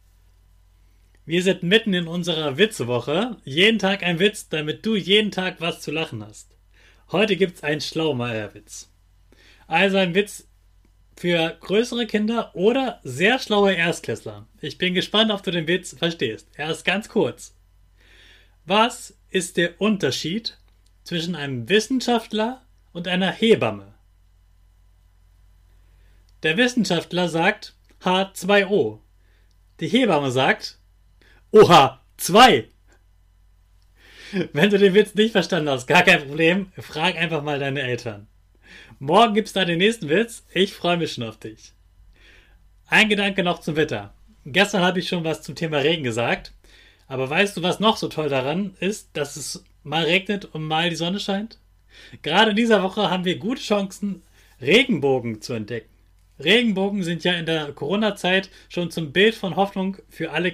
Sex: male